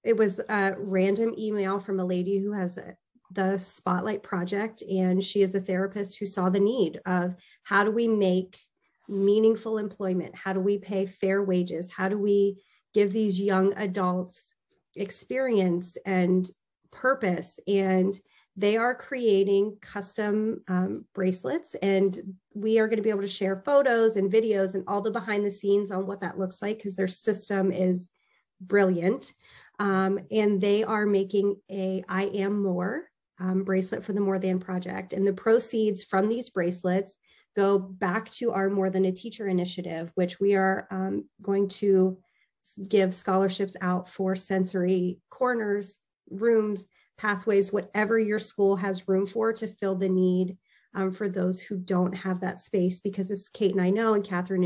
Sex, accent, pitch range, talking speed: female, American, 185-205 Hz, 165 wpm